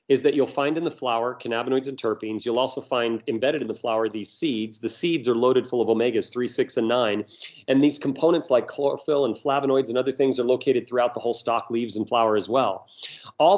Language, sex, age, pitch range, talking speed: English, male, 40-59, 120-150 Hz, 230 wpm